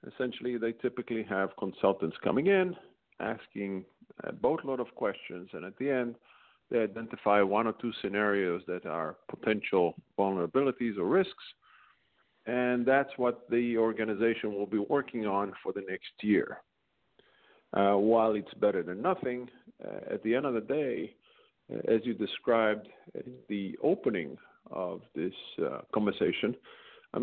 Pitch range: 105-130 Hz